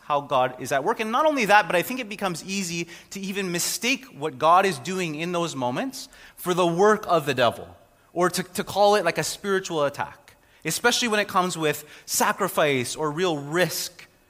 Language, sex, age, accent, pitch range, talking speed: English, male, 30-49, American, 145-190 Hz, 205 wpm